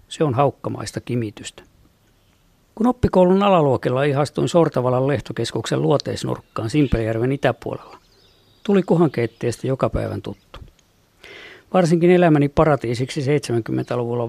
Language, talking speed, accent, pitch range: Finnish, 90 wpm, native, 120-160 Hz